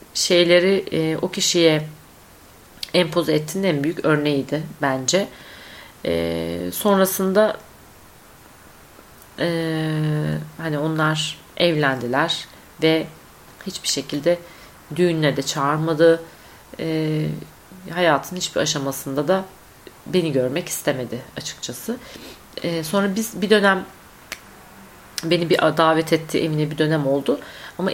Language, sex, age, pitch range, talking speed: Turkish, female, 40-59, 150-185 Hz, 95 wpm